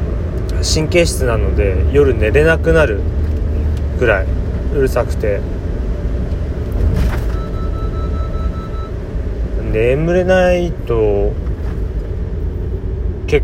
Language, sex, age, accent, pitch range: Japanese, male, 30-49, native, 85-110 Hz